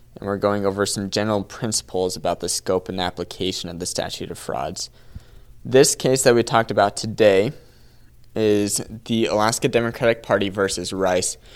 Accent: American